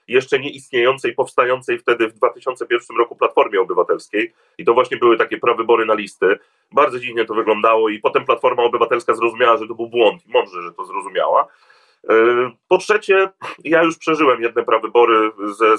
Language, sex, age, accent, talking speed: Polish, male, 30-49, native, 165 wpm